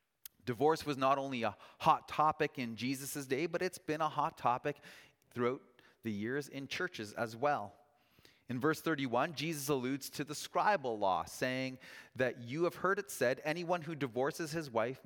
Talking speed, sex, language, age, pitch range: 175 wpm, male, English, 30-49, 115-145 Hz